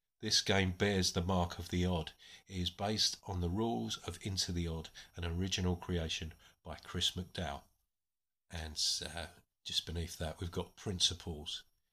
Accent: British